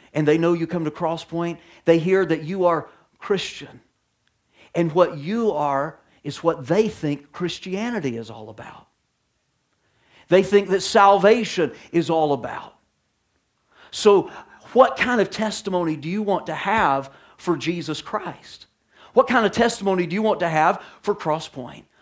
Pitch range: 160-200 Hz